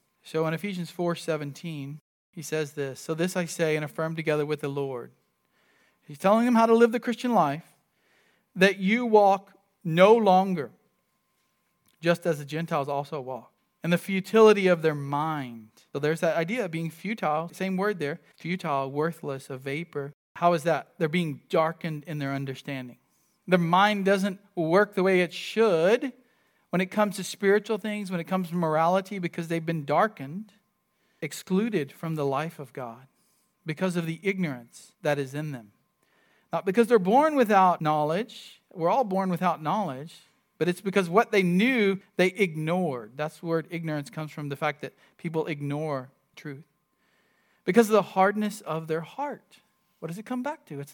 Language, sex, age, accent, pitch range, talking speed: English, male, 40-59, American, 155-205 Hz, 175 wpm